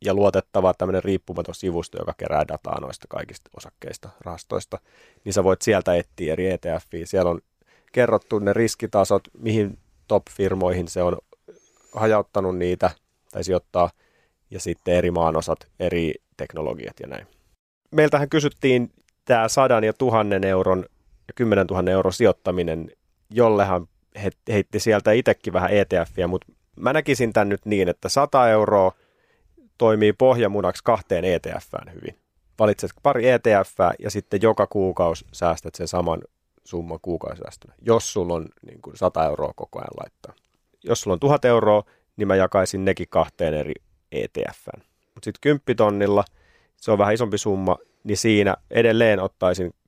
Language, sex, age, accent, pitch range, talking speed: Finnish, male, 30-49, native, 90-110 Hz, 145 wpm